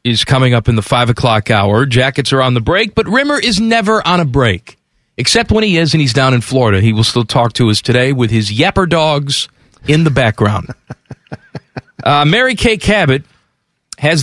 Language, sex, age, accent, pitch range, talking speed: English, male, 40-59, American, 115-145 Hz, 205 wpm